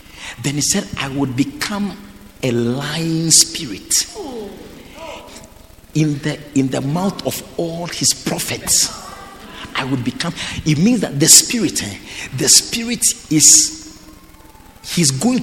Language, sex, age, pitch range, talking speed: English, male, 50-69, 140-205 Hz, 125 wpm